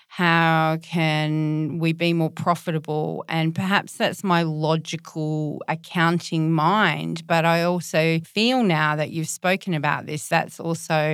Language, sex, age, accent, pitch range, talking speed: English, female, 40-59, Australian, 160-180 Hz, 135 wpm